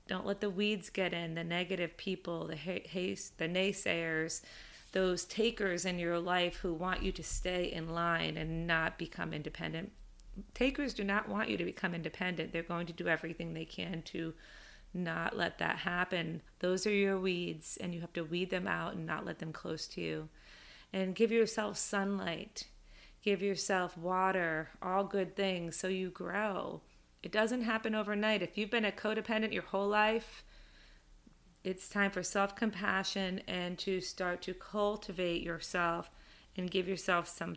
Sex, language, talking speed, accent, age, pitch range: female, English, 170 wpm, American, 30-49, 175-200 Hz